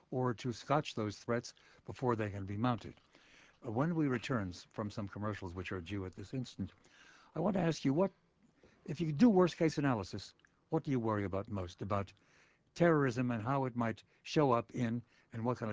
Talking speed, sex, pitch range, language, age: 200 wpm, male, 100-130 Hz, English, 60-79